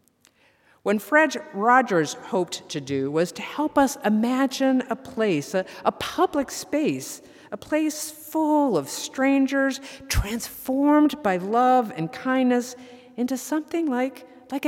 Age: 50-69